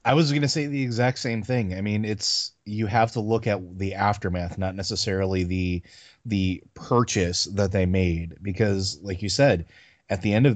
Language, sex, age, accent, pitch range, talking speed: English, male, 30-49, American, 95-115 Hz, 200 wpm